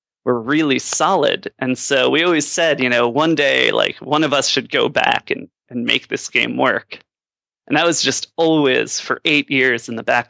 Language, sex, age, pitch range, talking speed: English, male, 30-49, 130-150 Hz, 210 wpm